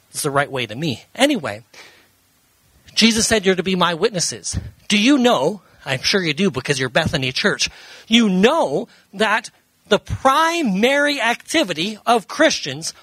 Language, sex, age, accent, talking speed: English, male, 40-59, American, 145 wpm